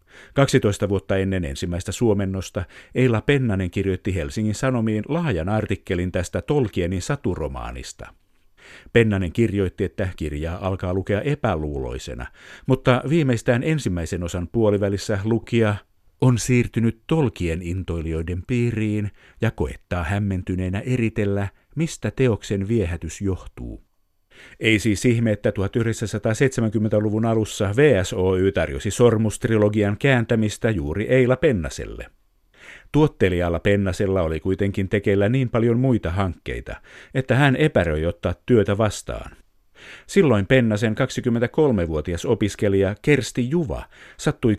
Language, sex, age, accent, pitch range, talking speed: Finnish, male, 50-69, native, 95-120 Hz, 100 wpm